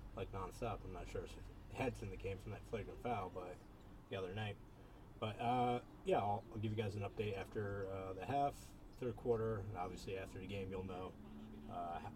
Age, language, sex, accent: 30-49, English, male, American